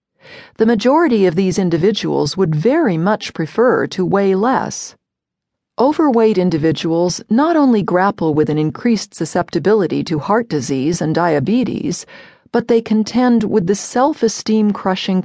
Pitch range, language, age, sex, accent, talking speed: 170-235 Hz, English, 40-59, female, American, 125 wpm